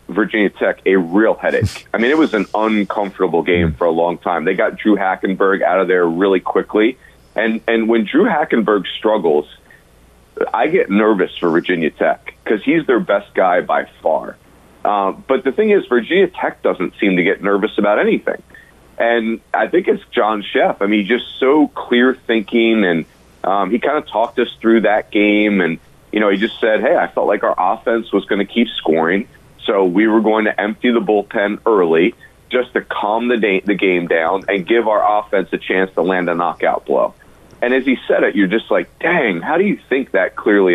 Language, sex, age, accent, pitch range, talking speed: English, male, 40-59, American, 100-115 Hz, 205 wpm